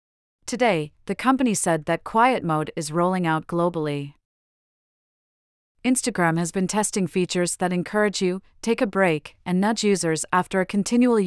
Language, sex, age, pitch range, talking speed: English, female, 40-59, 160-200 Hz, 150 wpm